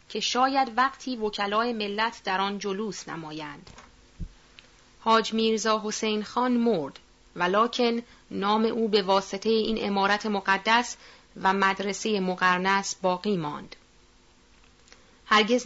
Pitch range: 190-225 Hz